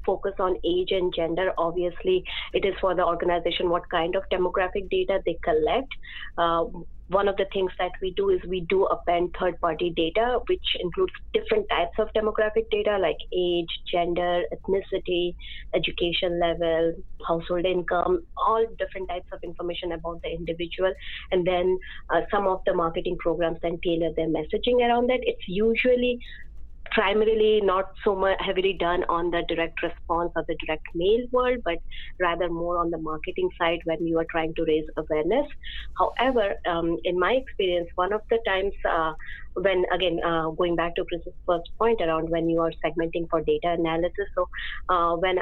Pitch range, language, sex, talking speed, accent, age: 165-205 Hz, English, female, 175 wpm, Indian, 20-39